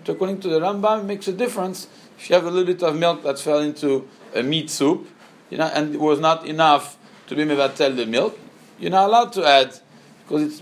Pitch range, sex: 135-190 Hz, male